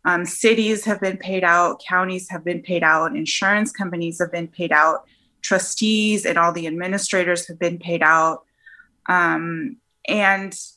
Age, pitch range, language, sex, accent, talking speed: 20-39, 175-220 Hz, English, female, American, 155 wpm